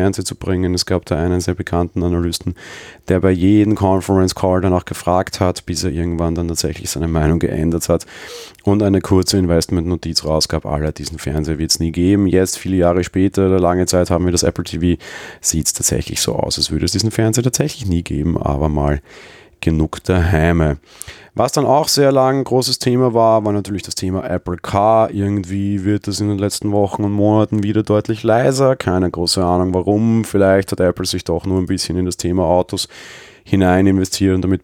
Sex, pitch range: male, 85-100 Hz